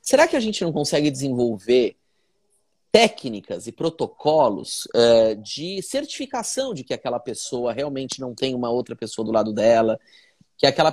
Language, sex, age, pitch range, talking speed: Portuguese, male, 30-49, 125-200 Hz, 150 wpm